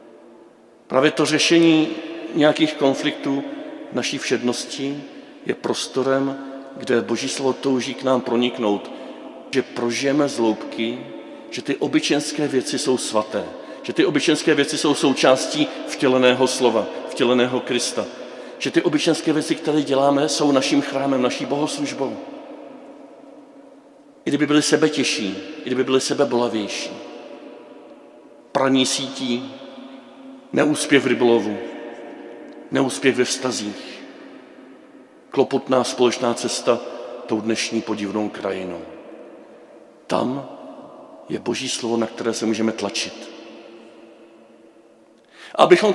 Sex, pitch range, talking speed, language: male, 120-160 Hz, 105 wpm, Czech